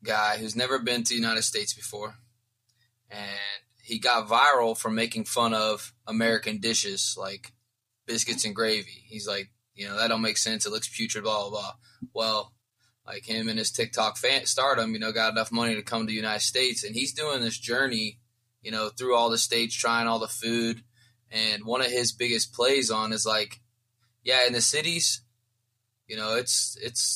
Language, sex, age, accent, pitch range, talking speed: English, male, 20-39, American, 110-120 Hz, 195 wpm